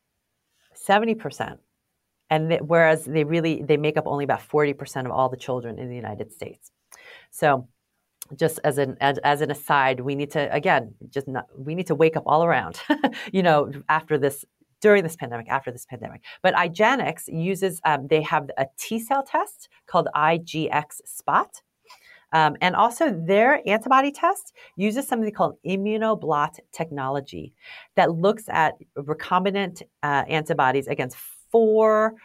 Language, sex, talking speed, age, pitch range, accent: English, female, 155 wpm, 40-59, 140-190 Hz, American